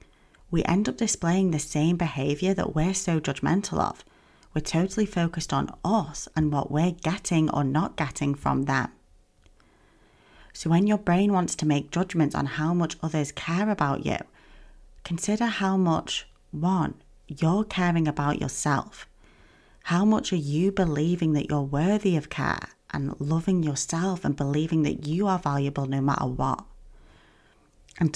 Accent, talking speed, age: British, 155 wpm, 30-49